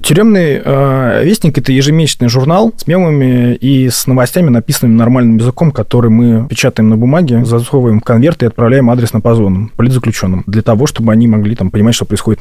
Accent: native